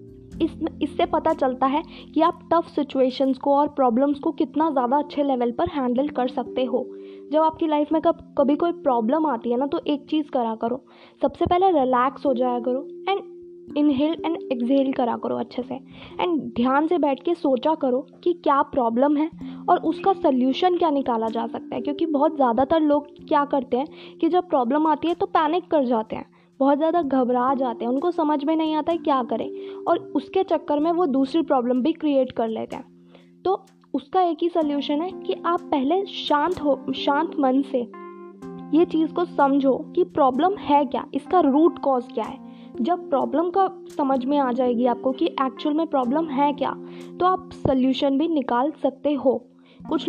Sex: female